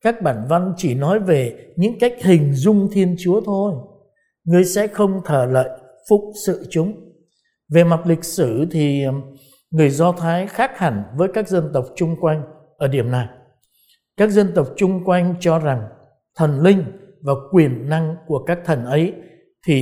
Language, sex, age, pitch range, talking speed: Vietnamese, male, 60-79, 155-195 Hz, 175 wpm